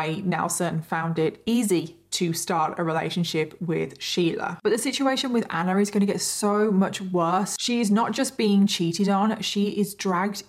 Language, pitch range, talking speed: English, 180-230 Hz, 185 wpm